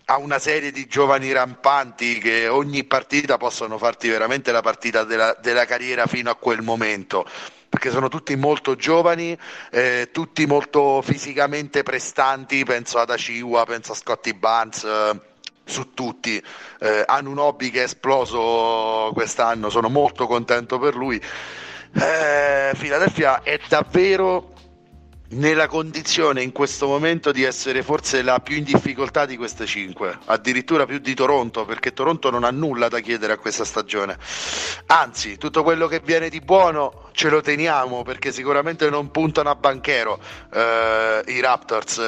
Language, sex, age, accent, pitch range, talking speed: Italian, male, 40-59, native, 115-145 Hz, 150 wpm